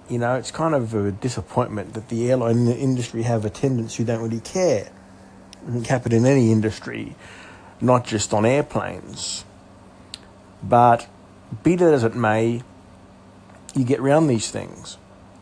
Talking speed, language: 150 wpm, English